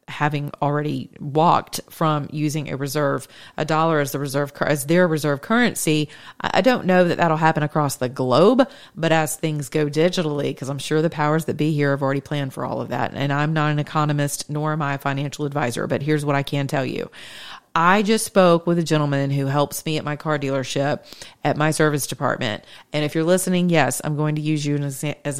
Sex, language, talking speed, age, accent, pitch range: female, English, 215 wpm, 40-59, American, 150-195 Hz